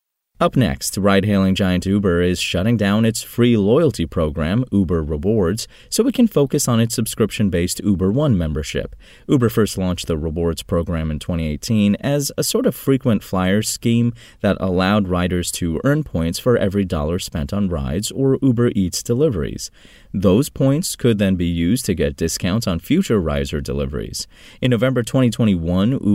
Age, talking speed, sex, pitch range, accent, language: 30-49, 165 wpm, male, 85-120 Hz, American, English